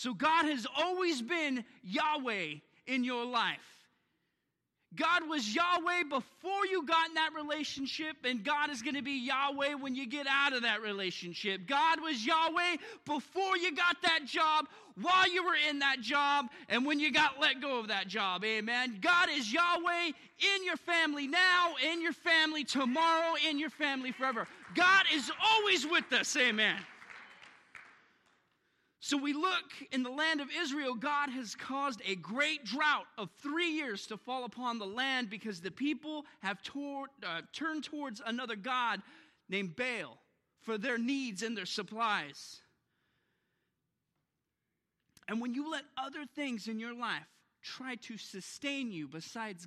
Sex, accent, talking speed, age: male, American, 155 wpm, 30-49